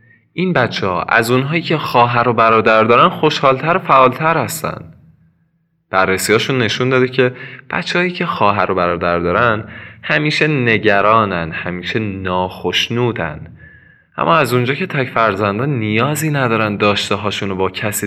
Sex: male